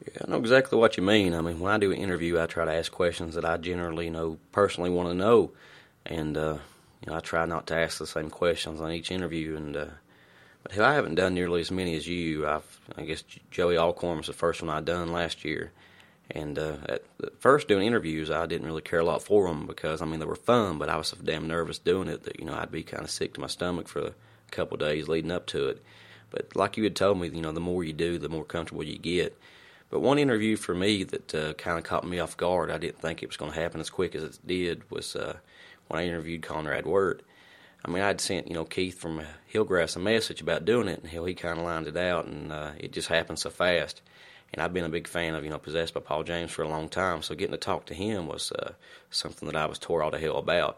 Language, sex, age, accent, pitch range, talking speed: English, male, 30-49, American, 80-90 Hz, 270 wpm